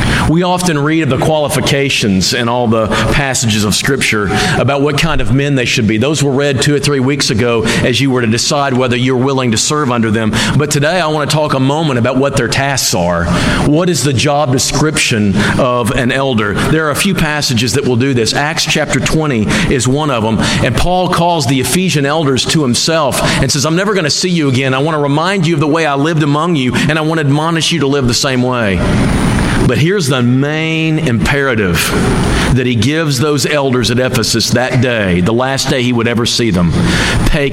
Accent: American